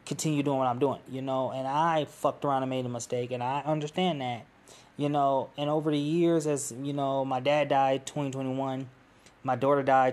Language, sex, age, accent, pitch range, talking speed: English, male, 20-39, American, 125-140 Hz, 205 wpm